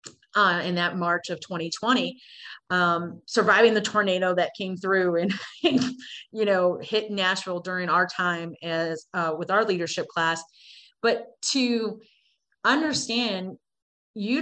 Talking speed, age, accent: 135 wpm, 30-49, American